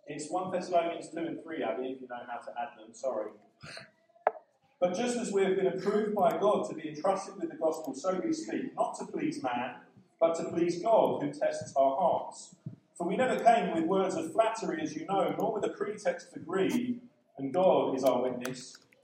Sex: male